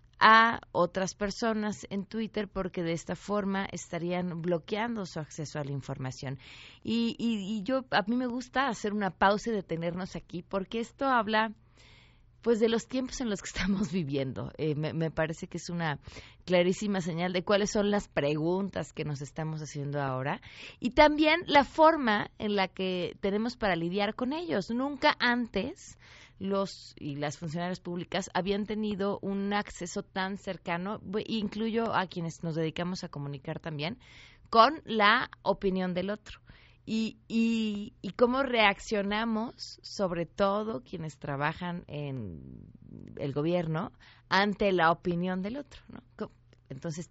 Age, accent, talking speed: 30-49, Mexican, 150 wpm